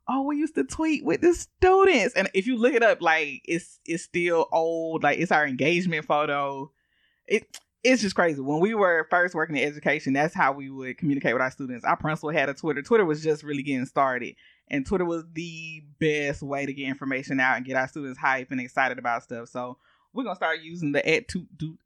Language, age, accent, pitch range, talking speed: English, 20-39, American, 135-185 Hz, 230 wpm